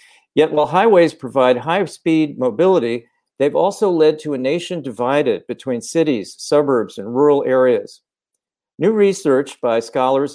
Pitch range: 125-165 Hz